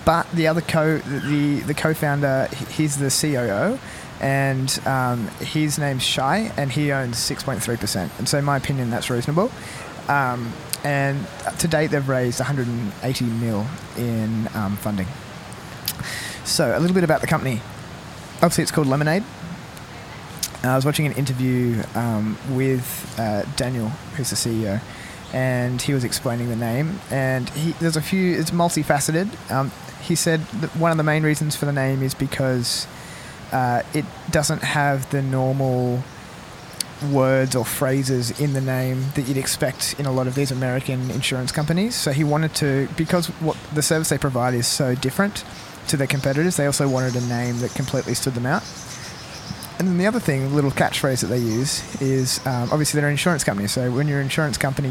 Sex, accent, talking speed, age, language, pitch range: male, Australian, 175 wpm, 20-39, English, 125-150 Hz